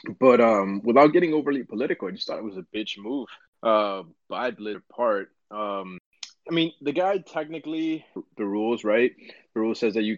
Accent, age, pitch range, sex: American, 20-39, 100-120 Hz, male